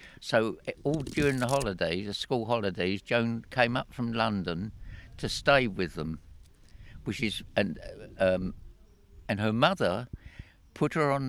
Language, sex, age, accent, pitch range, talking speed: English, male, 60-79, British, 100-130 Hz, 145 wpm